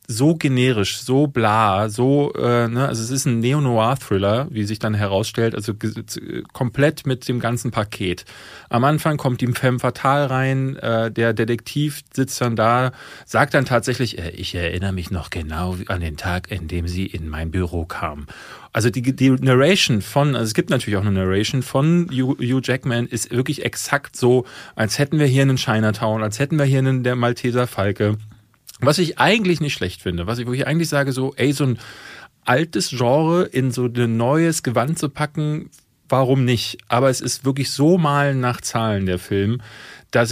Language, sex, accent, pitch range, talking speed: German, male, German, 110-135 Hz, 190 wpm